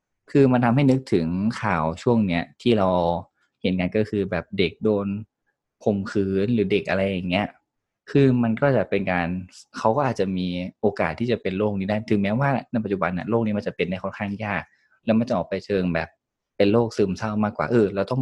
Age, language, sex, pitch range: 20-39, Thai, male, 90-110 Hz